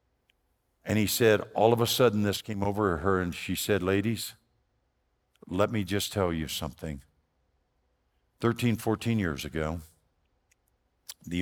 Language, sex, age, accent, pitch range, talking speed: English, male, 50-69, American, 85-110 Hz, 135 wpm